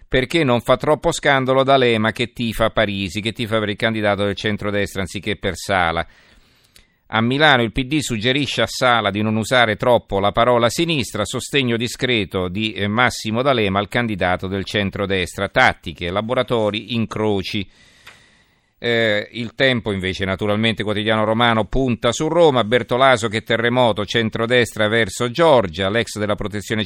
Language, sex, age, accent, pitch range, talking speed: Italian, male, 50-69, native, 100-120 Hz, 145 wpm